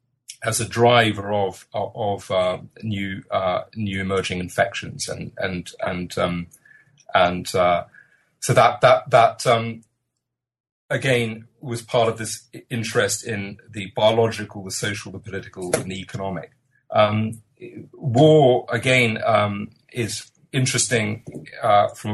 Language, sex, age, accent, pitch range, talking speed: English, male, 30-49, British, 95-120 Hz, 125 wpm